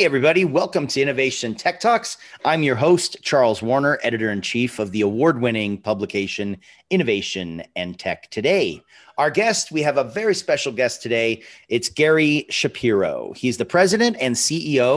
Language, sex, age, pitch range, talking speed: English, male, 40-59, 110-145 Hz, 160 wpm